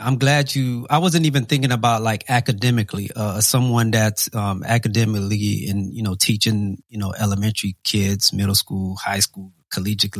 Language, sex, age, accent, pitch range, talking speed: English, male, 30-49, American, 105-130 Hz, 160 wpm